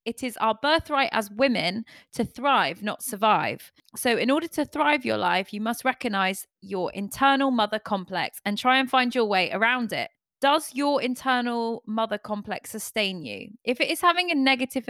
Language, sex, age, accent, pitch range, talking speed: English, female, 20-39, British, 205-265 Hz, 180 wpm